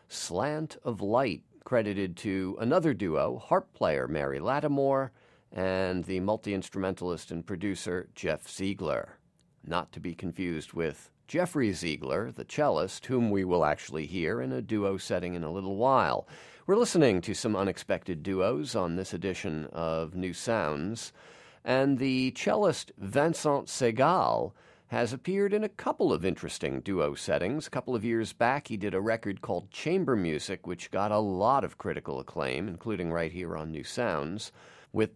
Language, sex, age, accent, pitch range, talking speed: English, male, 50-69, American, 90-120 Hz, 155 wpm